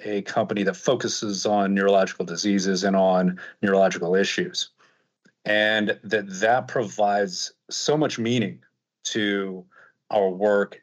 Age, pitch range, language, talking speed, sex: 40-59, 95-120 Hz, English, 115 wpm, male